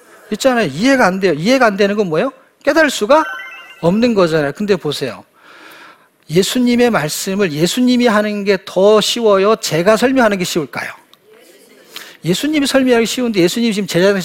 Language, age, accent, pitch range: Korean, 40-59, native, 160-230 Hz